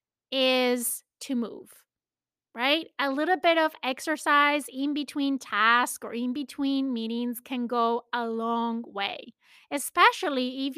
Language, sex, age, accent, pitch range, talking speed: English, female, 30-49, American, 245-290 Hz, 130 wpm